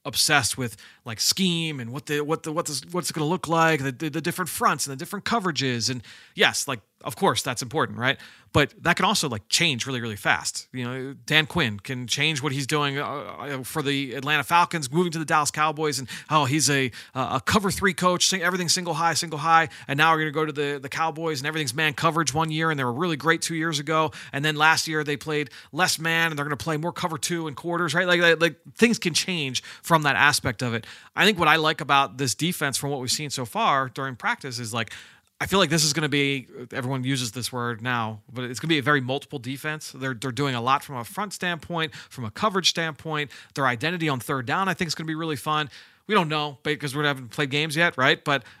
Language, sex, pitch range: English, male, 135-165 Hz